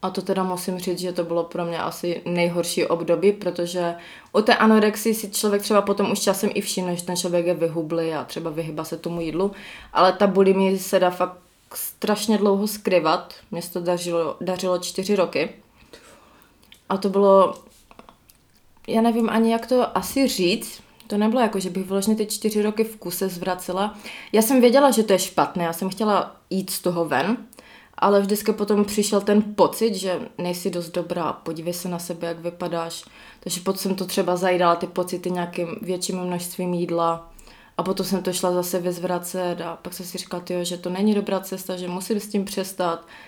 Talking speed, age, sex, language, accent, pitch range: 195 wpm, 20-39, female, Czech, native, 180-205 Hz